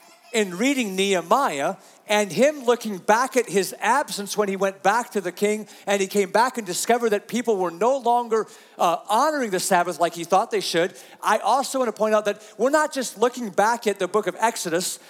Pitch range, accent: 195-250 Hz, American